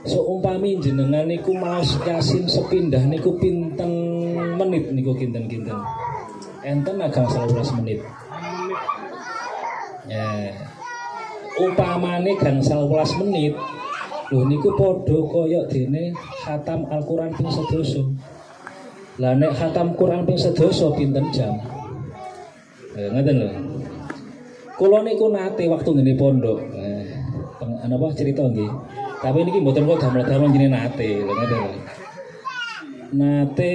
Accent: native